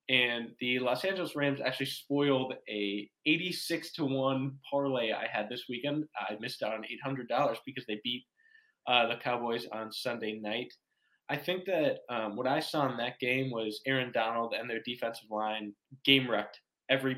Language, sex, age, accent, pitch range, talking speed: English, male, 10-29, American, 110-135 Hz, 175 wpm